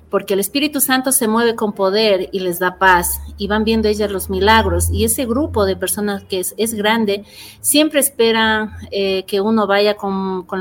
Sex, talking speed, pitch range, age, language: female, 200 wpm, 190-220 Hz, 40-59, Spanish